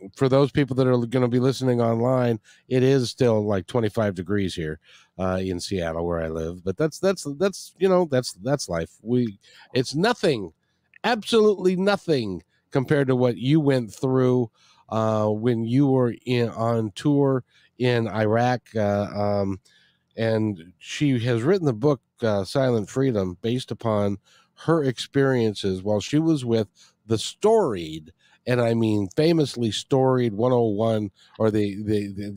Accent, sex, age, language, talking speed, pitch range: American, male, 50-69, English, 155 wpm, 95-125 Hz